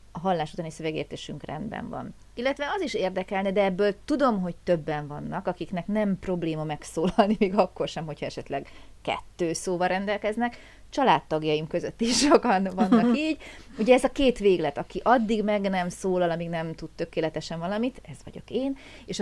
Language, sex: Hungarian, female